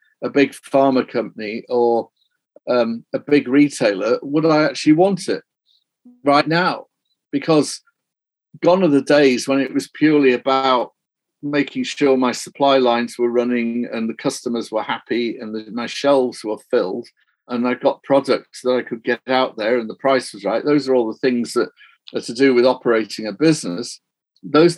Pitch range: 125-160 Hz